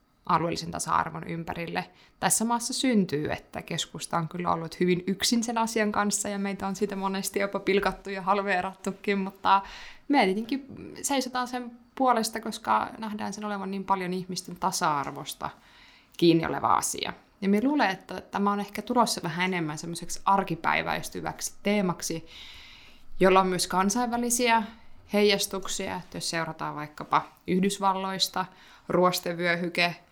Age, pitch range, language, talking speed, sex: 20-39, 170-200 Hz, Finnish, 130 wpm, female